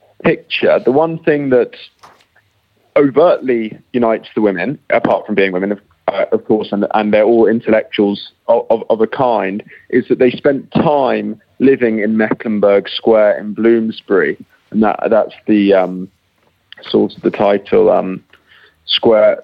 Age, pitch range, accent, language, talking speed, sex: 20-39, 105-130 Hz, British, English, 150 wpm, male